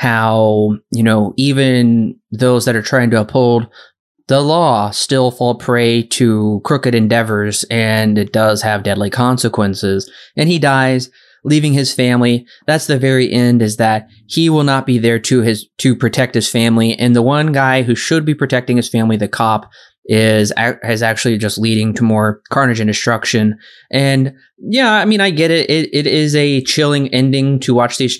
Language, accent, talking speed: English, American, 180 wpm